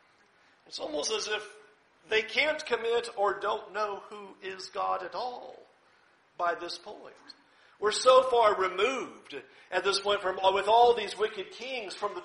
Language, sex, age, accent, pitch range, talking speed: English, male, 50-69, American, 205-245 Hz, 160 wpm